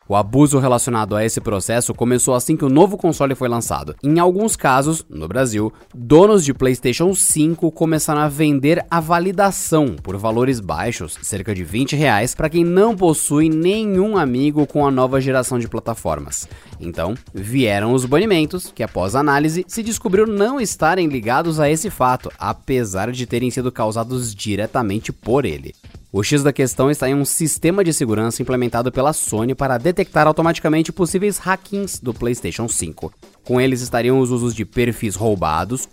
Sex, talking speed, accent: male, 165 wpm, Brazilian